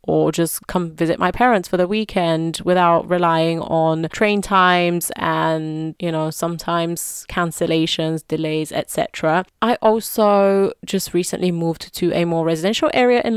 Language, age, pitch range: English, 30-49, 165-200 Hz